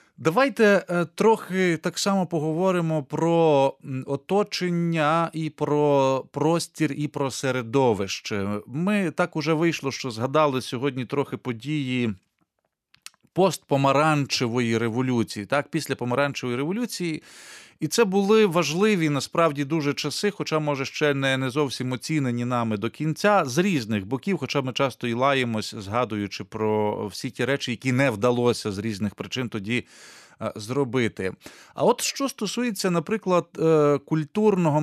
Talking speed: 125 wpm